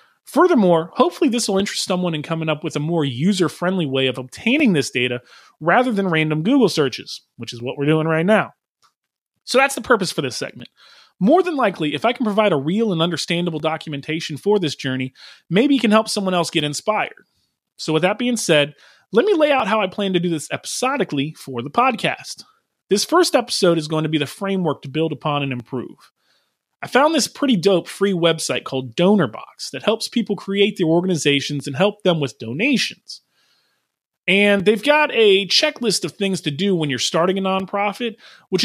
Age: 30-49